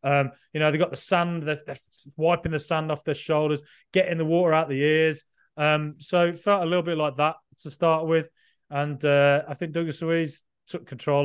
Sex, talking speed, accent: male, 225 wpm, British